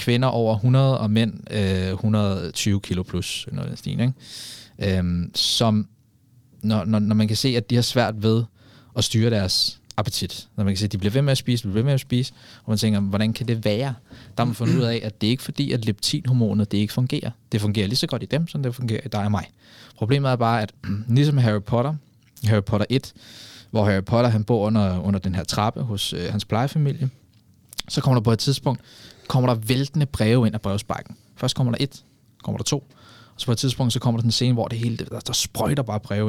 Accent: native